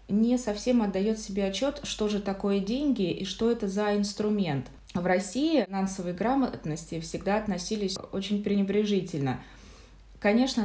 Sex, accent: female, native